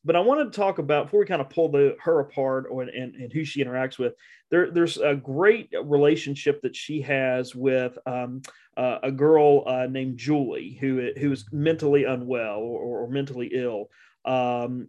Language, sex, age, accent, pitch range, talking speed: English, male, 30-49, American, 130-155 Hz, 190 wpm